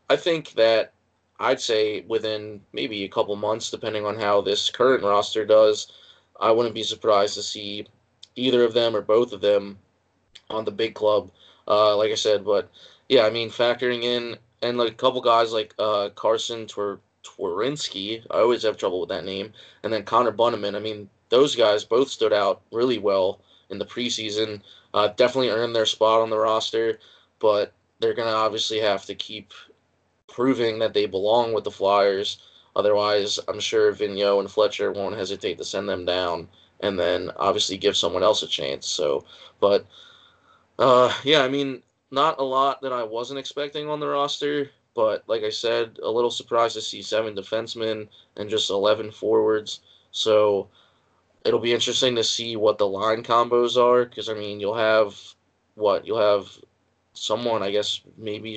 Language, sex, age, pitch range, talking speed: English, male, 20-39, 105-140 Hz, 180 wpm